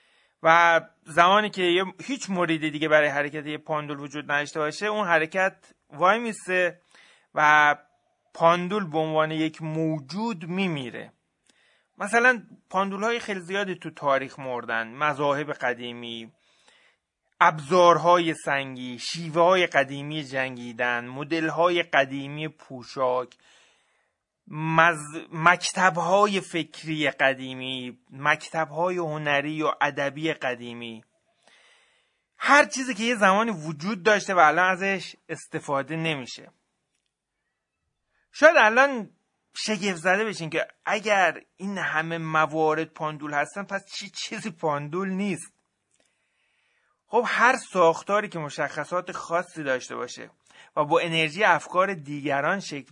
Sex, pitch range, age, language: male, 145-190 Hz, 30-49, Persian